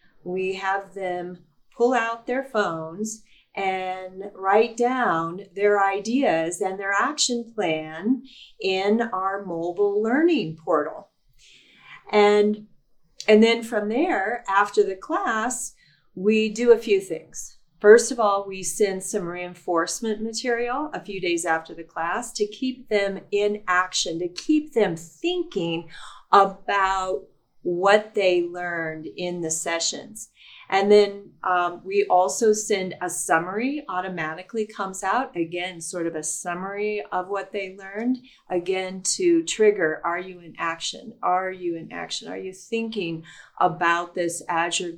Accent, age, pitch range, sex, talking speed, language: American, 40-59, 175-220 Hz, female, 135 wpm, English